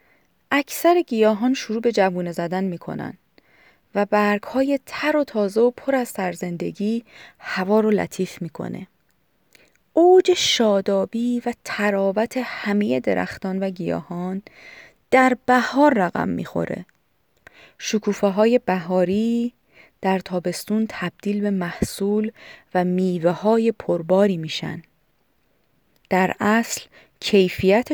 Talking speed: 100 wpm